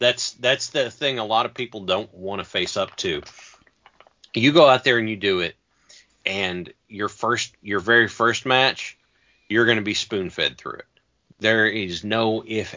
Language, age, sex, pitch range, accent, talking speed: English, 40-59, male, 100-125 Hz, American, 195 wpm